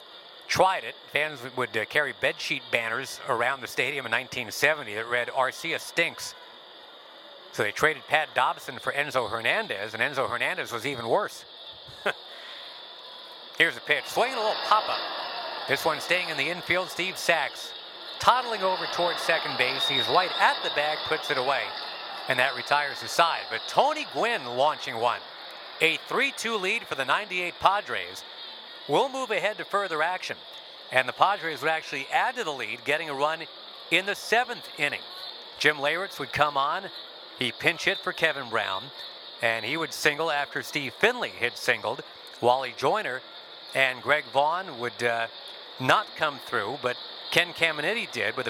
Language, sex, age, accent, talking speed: English, male, 50-69, American, 165 wpm